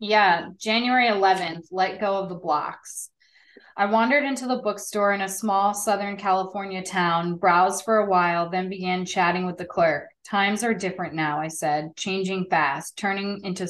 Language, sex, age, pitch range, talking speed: English, female, 20-39, 180-205 Hz, 170 wpm